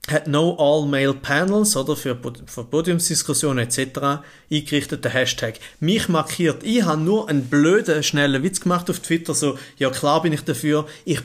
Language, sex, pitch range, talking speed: German, male, 130-180 Hz, 170 wpm